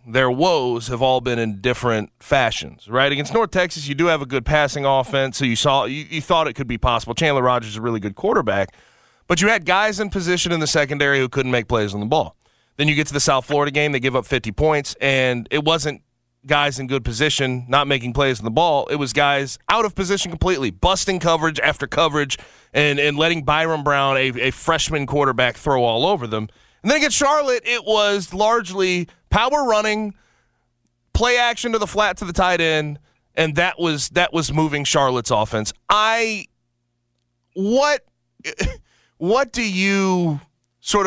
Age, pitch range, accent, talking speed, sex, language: 30-49, 130-190 Hz, American, 195 wpm, male, English